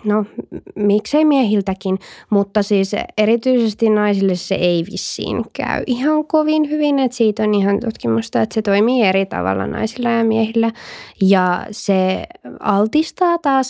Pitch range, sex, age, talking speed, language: 190-235 Hz, female, 20-39, 135 wpm, Finnish